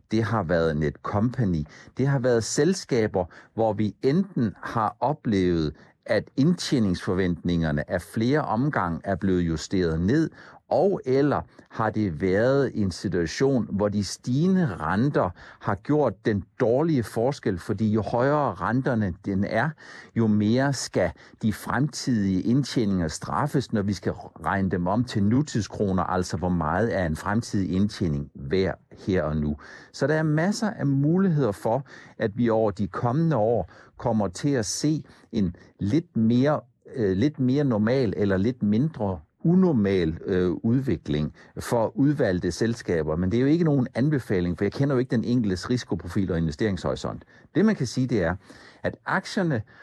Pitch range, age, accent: 95-130 Hz, 60-79, native